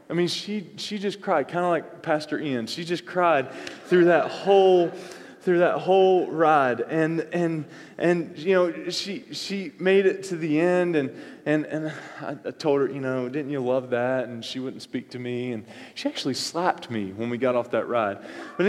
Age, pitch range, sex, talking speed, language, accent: 20-39, 125-190 Hz, male, 200 wpm, English, American